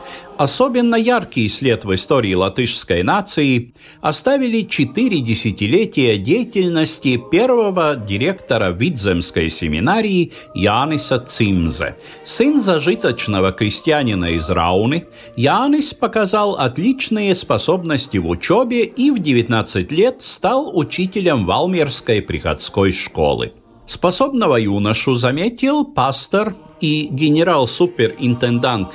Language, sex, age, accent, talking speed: Russian, male, 50-69, native, 90 wpm